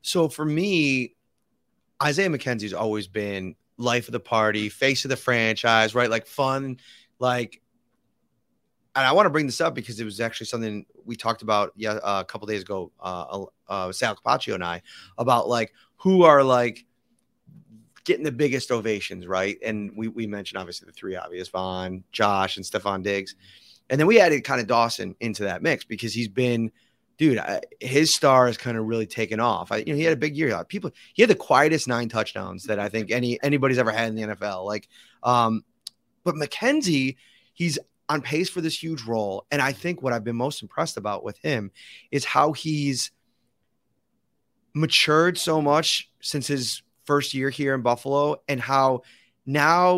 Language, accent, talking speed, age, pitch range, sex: English, American, 185 wpm, 30-49, 110-145 Hz, male